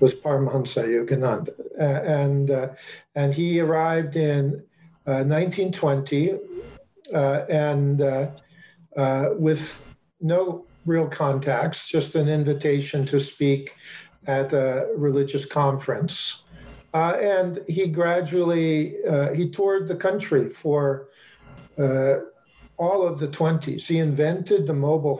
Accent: American